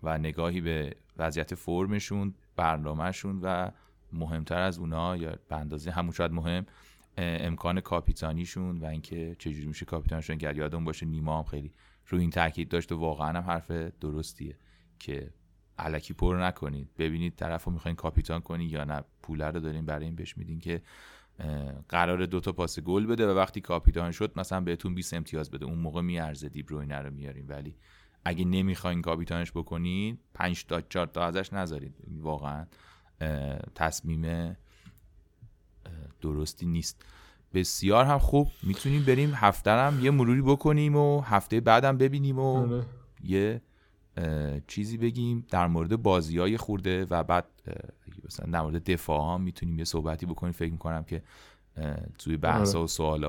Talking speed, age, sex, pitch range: 145 wpm, 30-49, male, 80-95 Hz